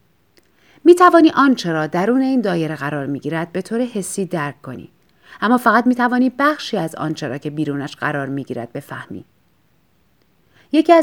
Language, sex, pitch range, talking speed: Persian, female, 160-240 Hz, 170 wpm